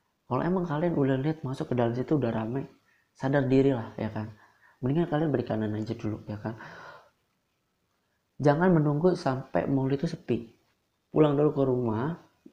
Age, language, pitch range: 20-39, Indonesian, 115-150 Hz